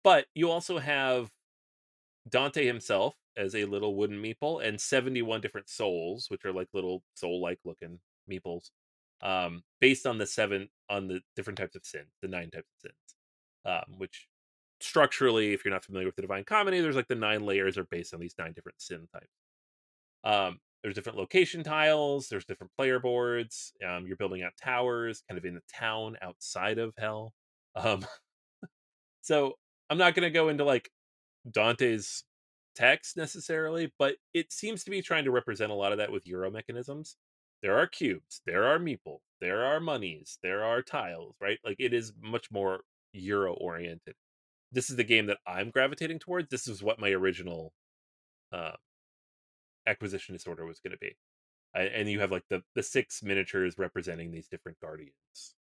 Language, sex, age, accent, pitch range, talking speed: English, male, 30-49, American, 90-130 Hz, 175 wpm